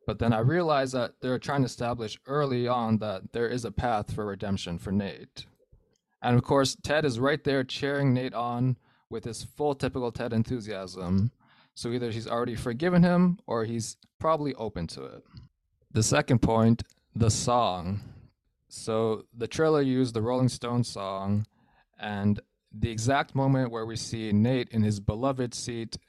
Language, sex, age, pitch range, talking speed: English, male, 20-39, 105-130 Hz, 170 wpm